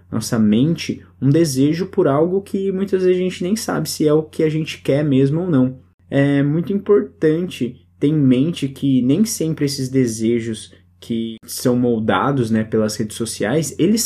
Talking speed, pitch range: 180 wpm, 125-170 Hz